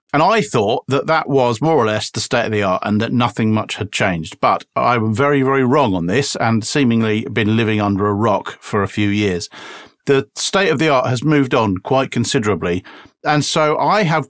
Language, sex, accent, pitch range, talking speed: English, male, British, 105-130 Hz, 220 wpm